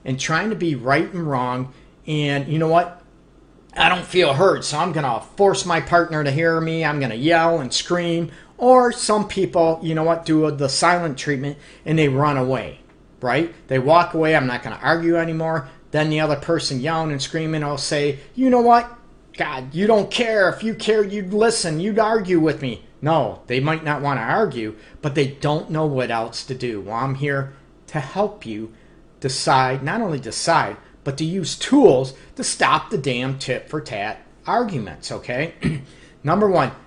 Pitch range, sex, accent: 135-175 Hz, male, American